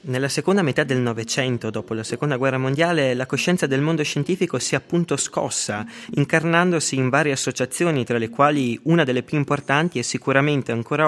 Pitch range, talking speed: 120-155 Hz, 180 wpm